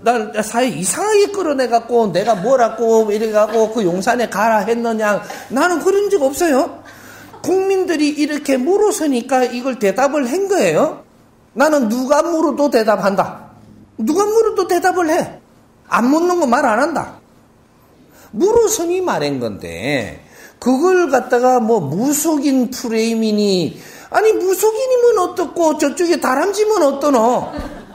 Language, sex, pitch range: Korean, male, 220-345 Hz